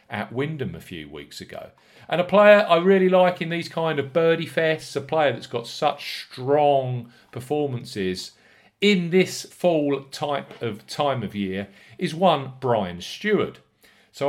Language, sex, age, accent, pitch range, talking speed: English, male, 40-59, British, 105-150 Hz, 160 wpm